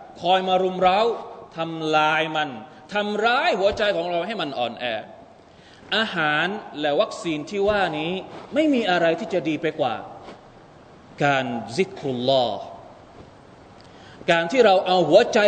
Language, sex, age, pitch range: Thai, male, 30-49, 185-295 Hz